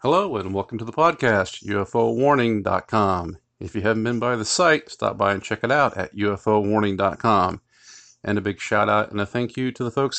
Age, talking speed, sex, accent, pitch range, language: 40-59, 200 wpm, male, American, 95-110 Hz, English